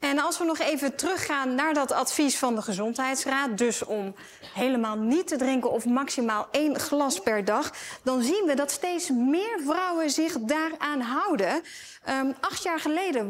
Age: 30-49